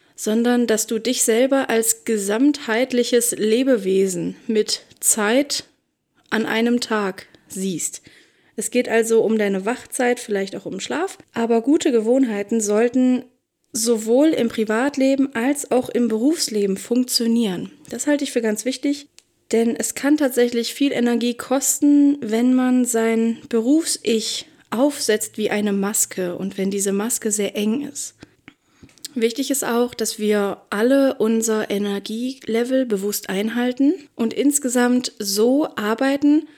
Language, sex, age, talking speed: German, female, 20-39, 130 wpm